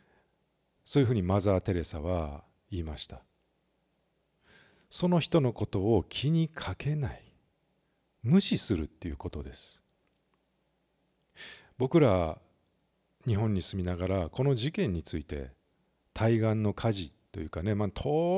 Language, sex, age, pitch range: Japanese, male, 40-59, 85-130 Hz